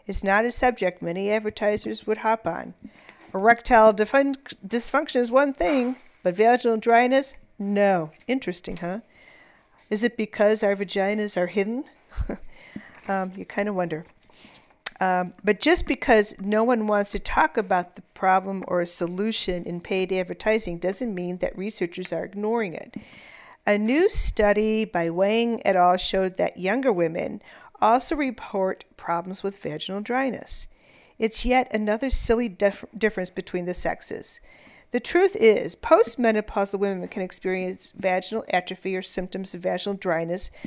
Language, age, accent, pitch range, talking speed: English, 50-69, American, 185-230 Hz, 140 wpm